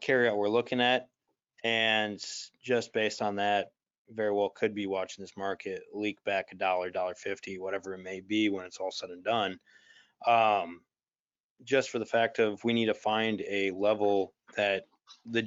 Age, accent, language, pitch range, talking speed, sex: 20-39, American, English, 95-120 Hz, 180 wpm, male